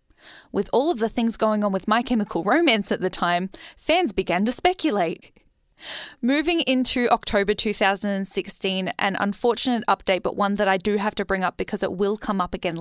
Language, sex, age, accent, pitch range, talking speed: English, female, 10-29, Australian, 185-235 Hz, 185 wpm